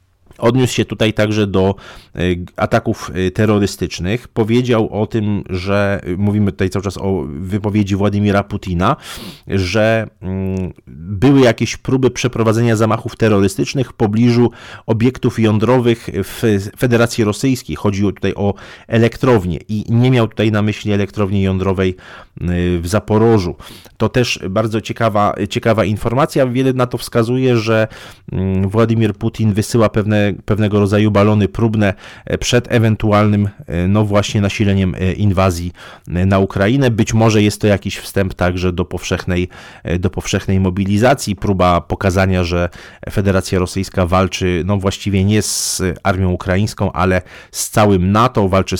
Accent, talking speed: native, 125 wpm